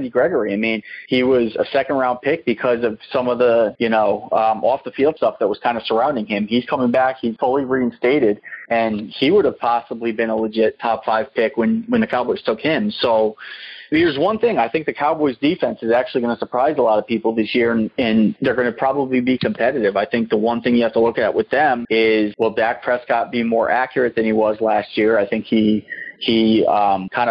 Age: 30-49